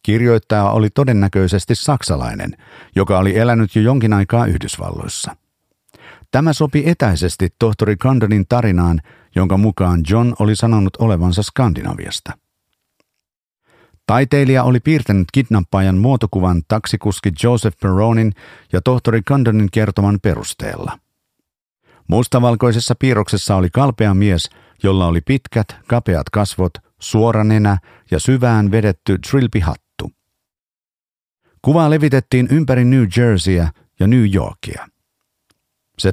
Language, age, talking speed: Finnish, 50-69, 105 wpm